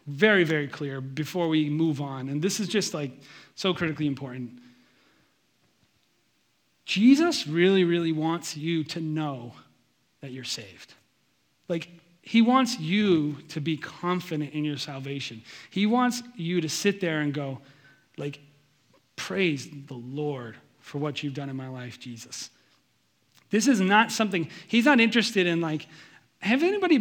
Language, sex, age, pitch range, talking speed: English, male, 30-49, 150-205 Hz, 145 wpm